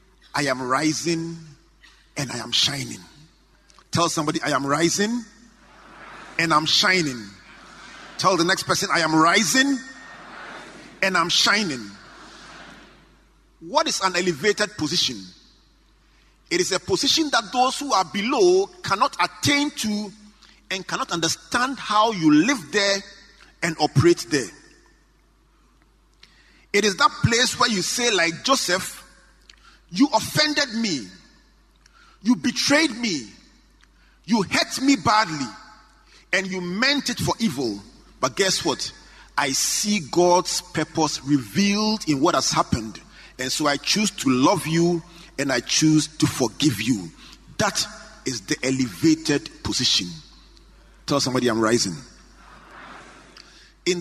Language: English